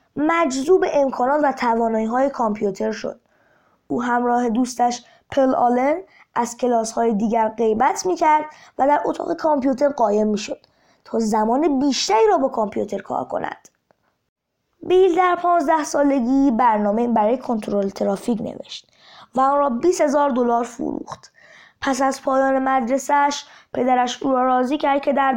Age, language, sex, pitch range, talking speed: 20-39, Persian, female, 245-295 Hz, 135 wpm